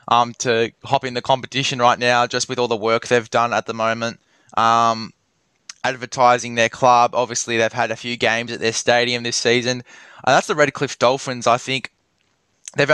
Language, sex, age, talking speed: English, male, 10-29, 195 wpm